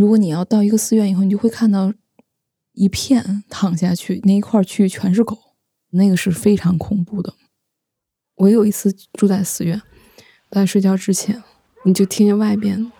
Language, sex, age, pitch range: Chinese, female, 20-39, 185-210 Hz